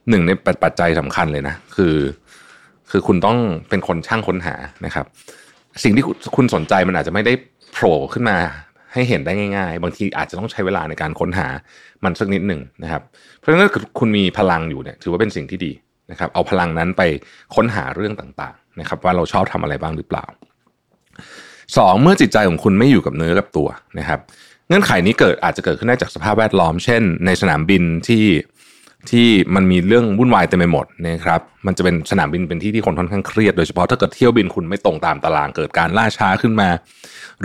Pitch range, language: 85-110 Hz, Thai